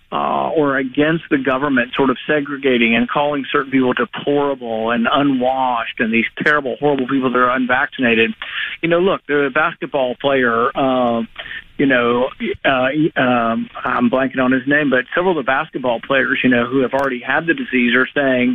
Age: 50-69